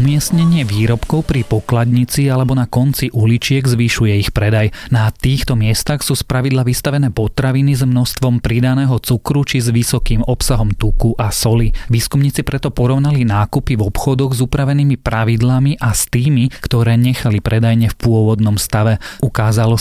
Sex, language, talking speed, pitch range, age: male, Slovak, 145 wpm, 110-130 Hz, 30-49